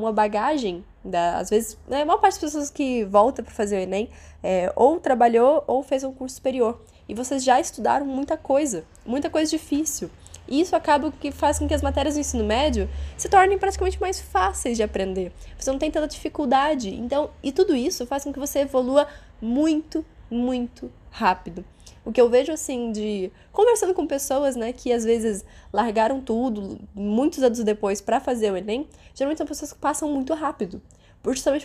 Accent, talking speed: Brazilian, 190 wpm